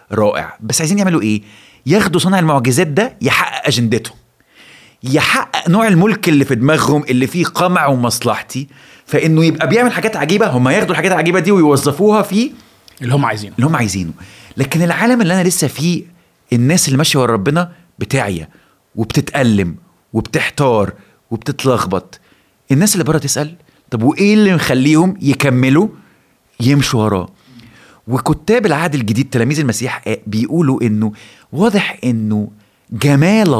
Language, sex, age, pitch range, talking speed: Arabic, male, 30-49, 120-170 Hz, 135 wpm